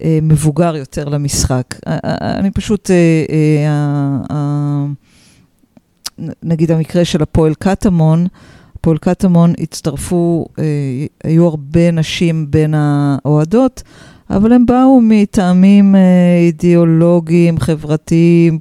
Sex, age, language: female, 50-69, Hebrew